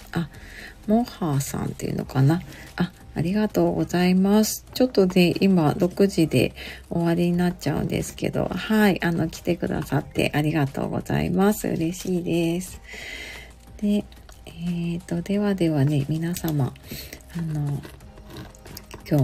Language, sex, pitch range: Japanese, female, 155-200 Hz